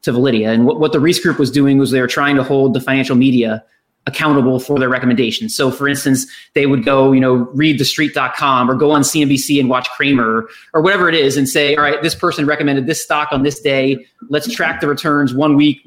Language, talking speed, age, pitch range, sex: English, 240 wpm, 30-49, 125-145 Hz, male